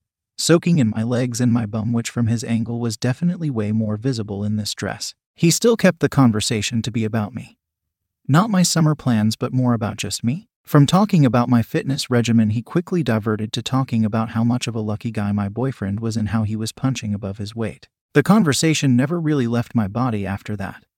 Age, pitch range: 30-49, 110-135 Hz